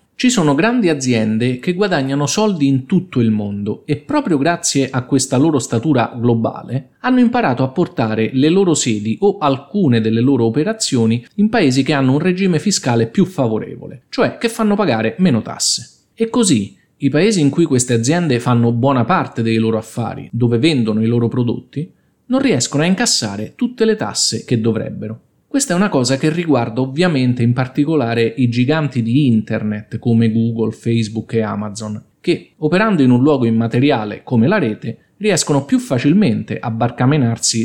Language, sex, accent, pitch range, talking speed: Italian, male, native, 115-160 Hz, 170 wpm